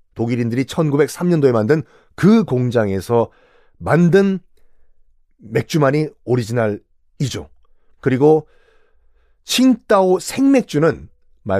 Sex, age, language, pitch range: male, 40-59, Korean, 115-160 Hz